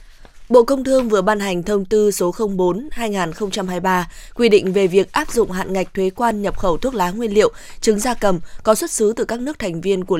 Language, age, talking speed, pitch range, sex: Vietnamese, 20-39, 225 wpm, 185-220 Hz, female